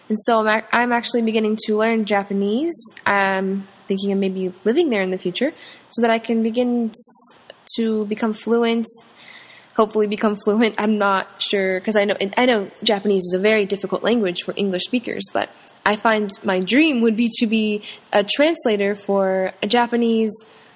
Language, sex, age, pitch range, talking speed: English, female, 10-29, 195-225 Hz, 170 wpm